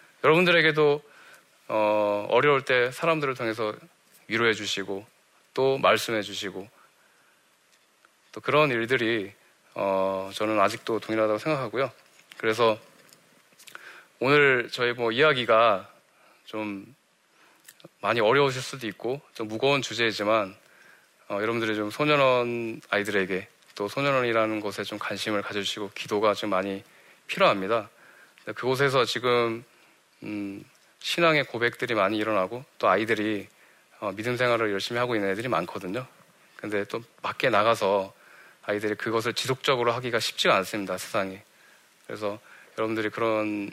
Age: 20-39